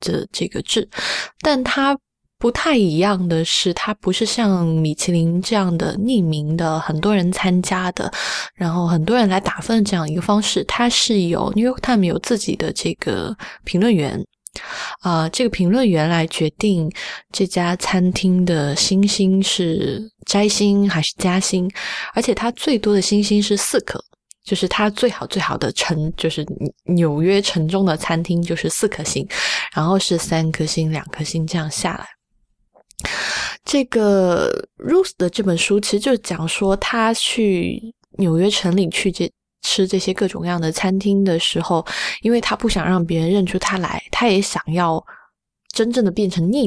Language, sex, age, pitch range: Chinese, female, 20-39, 170-215 Hz